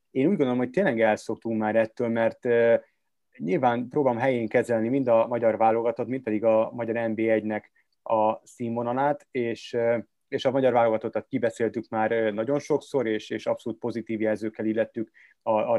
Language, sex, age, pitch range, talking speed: Hungarian, male, 30-49, 110-125 Hz, 155 wpm